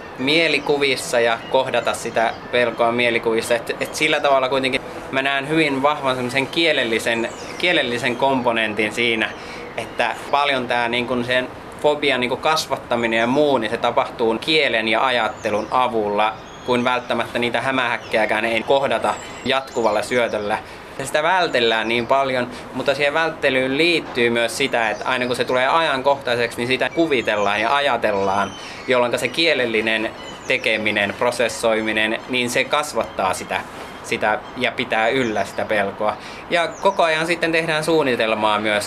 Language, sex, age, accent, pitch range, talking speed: Finnish, male, 20-39, native, 115-140 Hz, 130 wpm